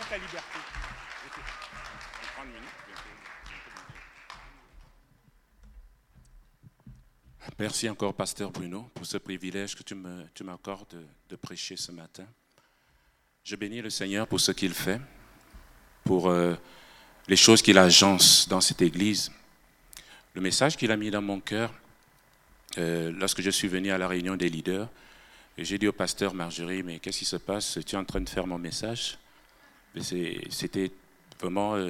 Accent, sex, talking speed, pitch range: French, male, 140 wpm, 85-100 Hz